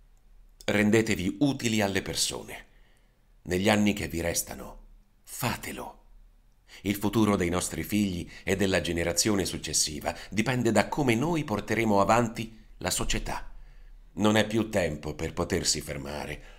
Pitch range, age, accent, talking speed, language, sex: 80-100 Hz, 40-59, native, 125 wpm, Italian, male